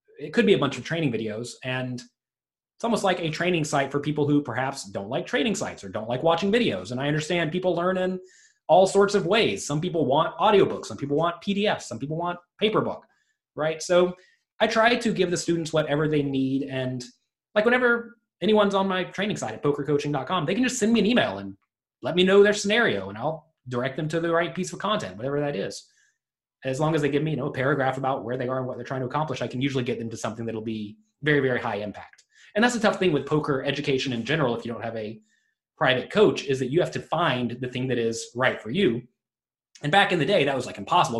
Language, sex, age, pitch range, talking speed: English, male, 30-49, 125-175 Hz, 250 wpm